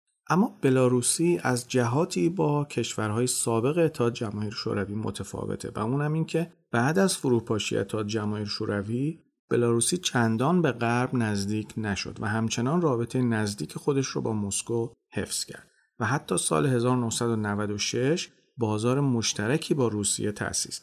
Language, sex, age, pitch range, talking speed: Persian, male, 40-59, 110-150 Hz, 135 wpm